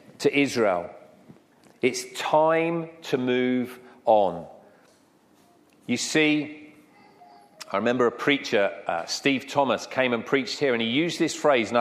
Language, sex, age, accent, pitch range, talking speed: English, male, 40-59, British, 130-170 Hz, 130 wpm